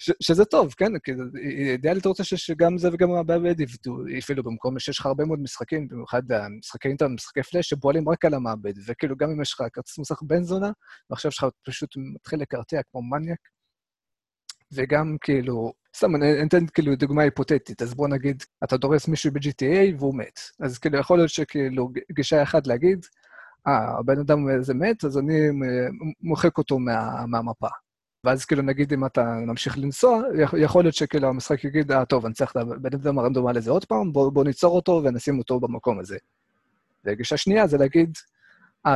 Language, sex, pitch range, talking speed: Hebrew, male, 130-165 Hz, 175 wpm